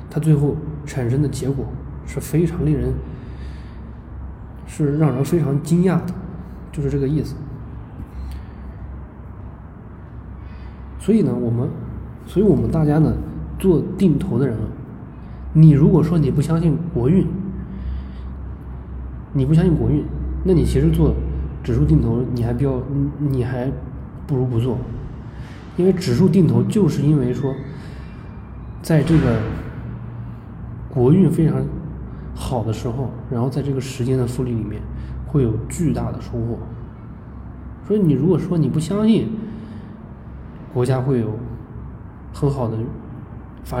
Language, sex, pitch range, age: Chinese, male, 115-150 Hz, 20-39